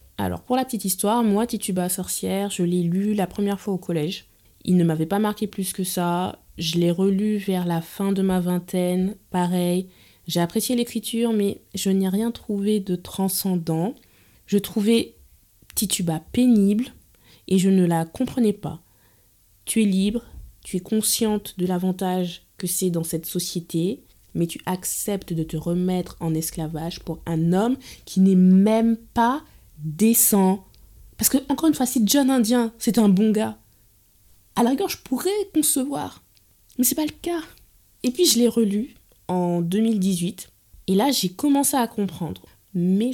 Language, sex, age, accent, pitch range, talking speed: French, female, 20-39, French, 170-215 Hz, 165 wpm